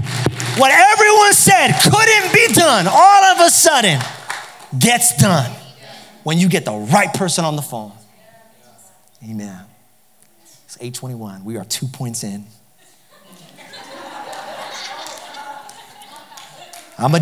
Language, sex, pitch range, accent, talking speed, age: English, male, 135-200 Hz, American, 105 wpm, 30-49